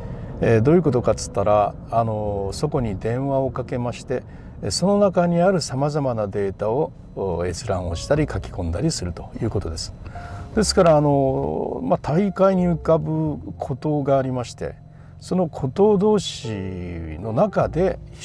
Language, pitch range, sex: Japanese, 100-150 Hz, male